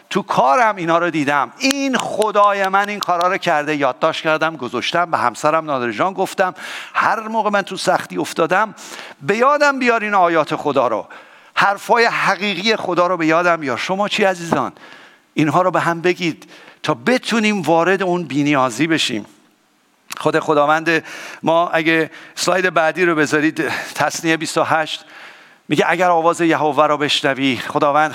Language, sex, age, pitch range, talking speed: English, male, 50-69, 150-185 Hz, 155 wpm